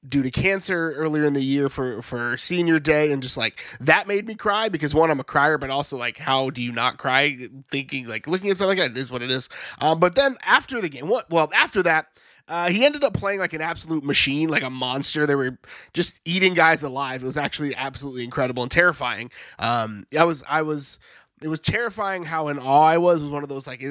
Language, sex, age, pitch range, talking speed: English, male, 20-39, 135-180 Hz, 240 wpm